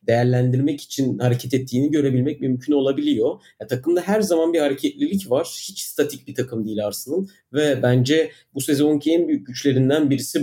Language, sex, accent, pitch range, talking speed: Turkish, male, native, 125-150 Hz, 160 wpm